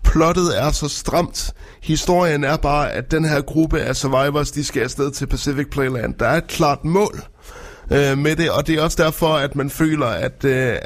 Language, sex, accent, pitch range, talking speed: Danish, male, native, 125-150 Hz, 205 wpm